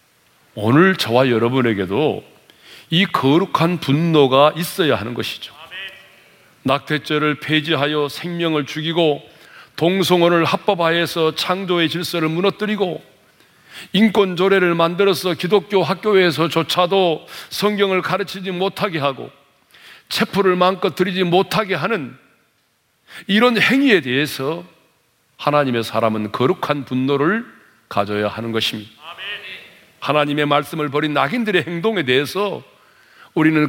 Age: 40-59